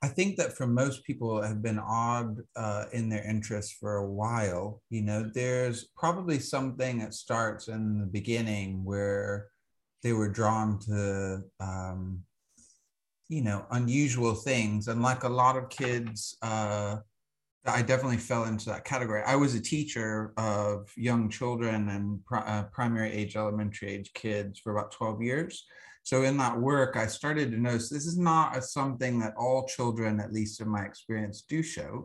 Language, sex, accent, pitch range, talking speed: English, male, American, 105-130 Hz, 170 wpm